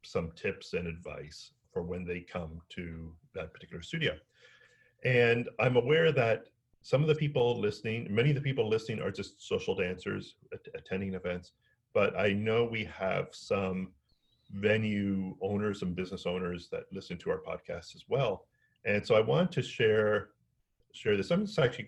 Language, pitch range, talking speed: English, 100-135 Hz, 170 wpm